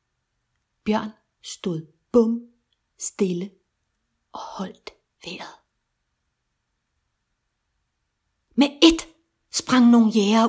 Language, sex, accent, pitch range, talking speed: Danish, female, native, 215-260 Hz, 70 wpm